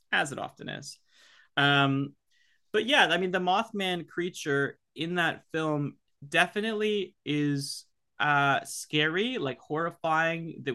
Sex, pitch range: male, 120-145 Hz